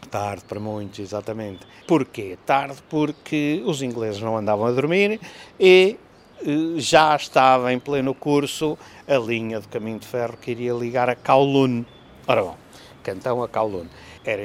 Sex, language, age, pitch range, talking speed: male, English, 50-69, 110-145 Hz, 155 wpm